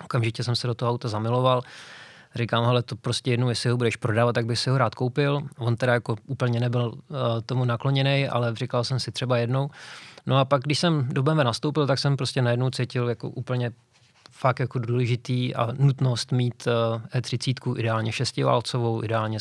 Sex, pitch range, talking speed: male, 120-130 Hz, 190 wpm